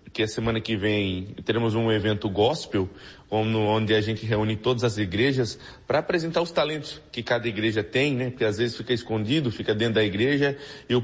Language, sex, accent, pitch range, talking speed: Portuguese, male, Brazilian, 110-130 Hz, 200 wpm